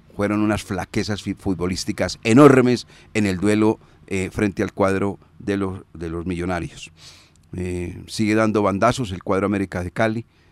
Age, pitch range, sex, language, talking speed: 40-59, 90-105 Hz, male, Spanish, 145 wpm